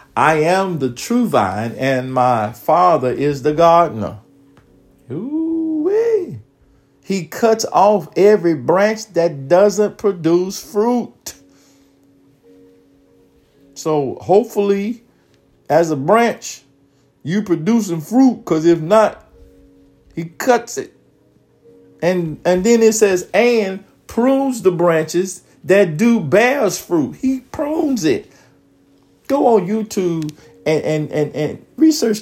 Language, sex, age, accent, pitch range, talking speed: English, male, 50-69, American, 140-220 Hz, 110 wpm